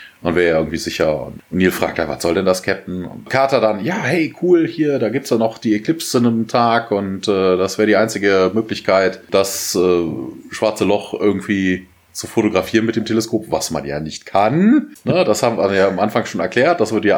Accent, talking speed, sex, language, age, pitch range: German, 225 wpm, male, German, 30-49, 90-115 Hz